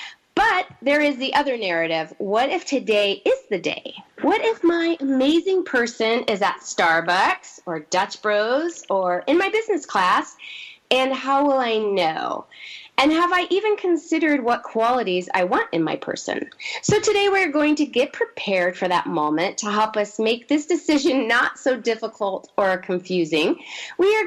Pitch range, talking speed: 200-305 Hz, 170 wpm